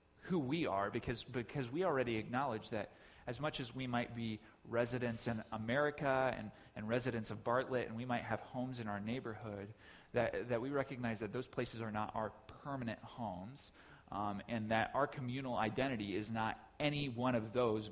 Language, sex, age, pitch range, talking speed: English, male, 30-49, 105-140 Hz, 185 wpm